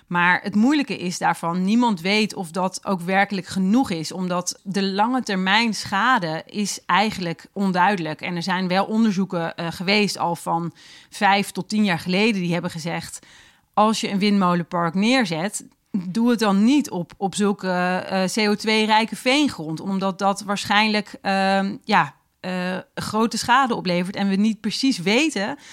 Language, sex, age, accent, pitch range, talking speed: Dutch, female, 30-49, Dutch, 185-225 Hz, 155 wpm